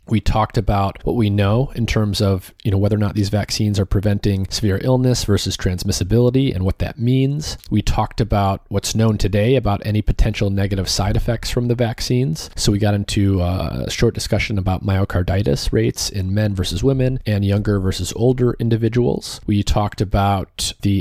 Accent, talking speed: American, 185 wpm